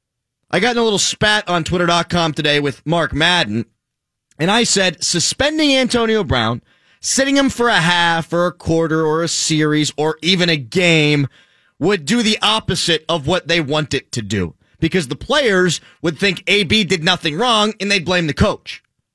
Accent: American